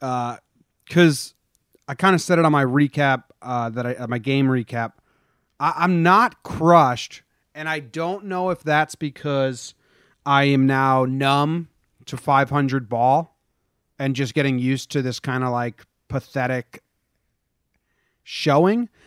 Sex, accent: male, American